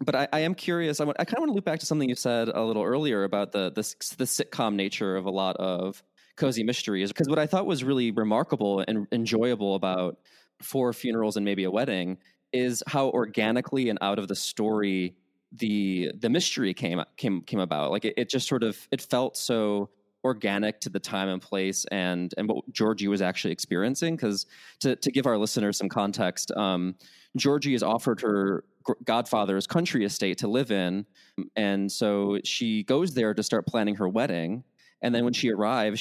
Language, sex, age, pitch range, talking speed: English, male, 20-39, 100-130 Hz, 200 wpm